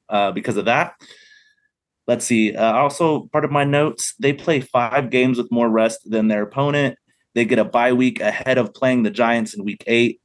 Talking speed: 205 wpm